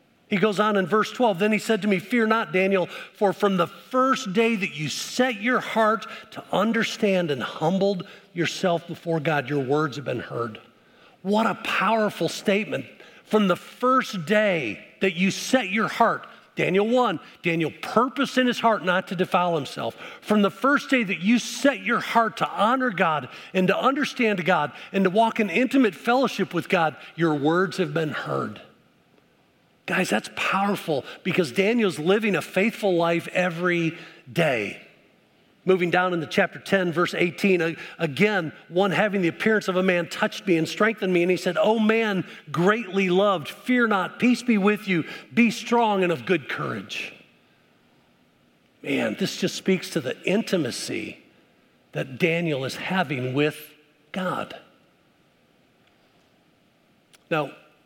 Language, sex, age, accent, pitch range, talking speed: English, male, 50-69, American, 170-220 Hz, 160 wpm